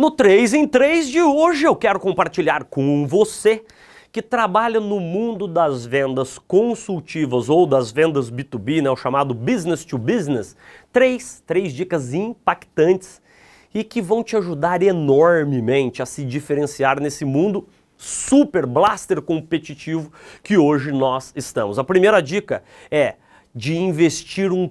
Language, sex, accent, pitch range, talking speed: Portuguese, male, Brazilian, 145-205 Hz, 135 wpm